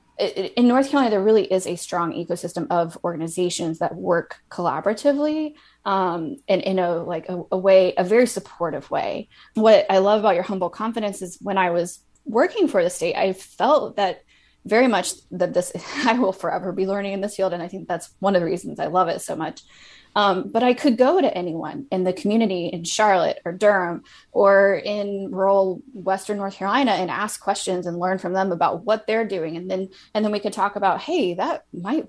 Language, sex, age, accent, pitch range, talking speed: English, female, 20-39, American, 175-210 Hz, 210 wpm